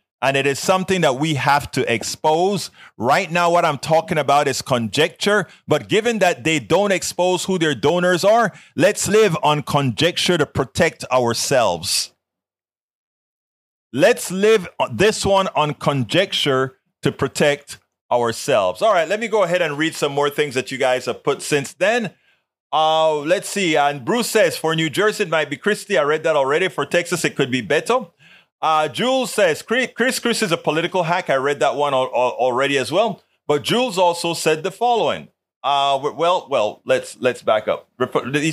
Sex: male